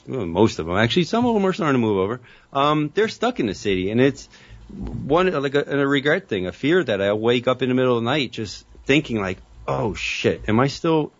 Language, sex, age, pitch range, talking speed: English, male, 30-49, 110-145 Hz, 245 wpm